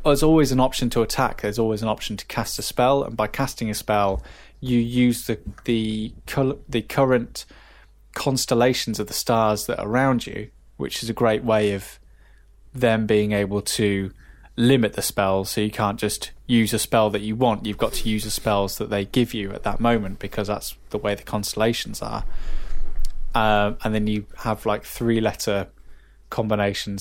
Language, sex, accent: English, male, British